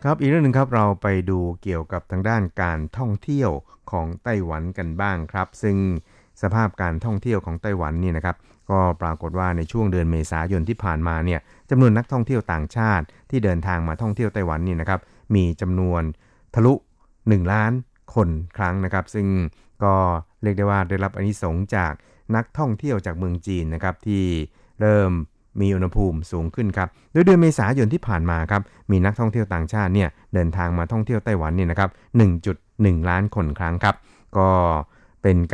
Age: 60-79